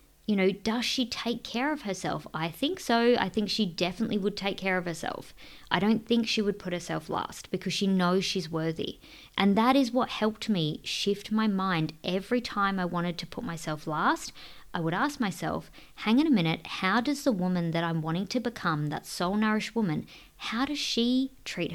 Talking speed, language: 205 wpm, English